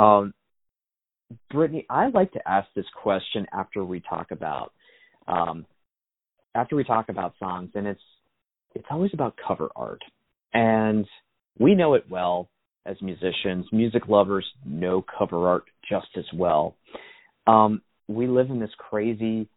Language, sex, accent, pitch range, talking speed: English, male, American, 95-120 Hz, 140 wpm